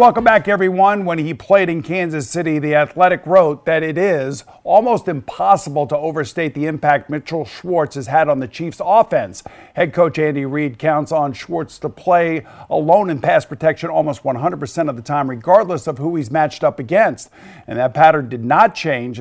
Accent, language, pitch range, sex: American, English, 140-170 Hz, male